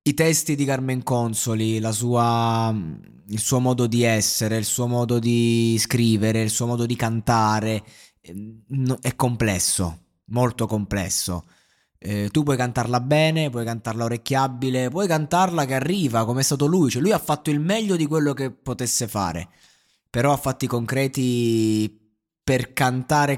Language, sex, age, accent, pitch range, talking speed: Italian, male, 20-39, native, 110-125 Hz, 150 wpm